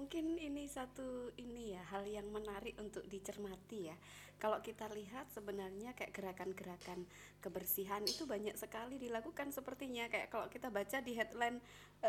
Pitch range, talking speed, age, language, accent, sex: 205-265 Hz, 145 wpm, 20-39, Indonesian, native, female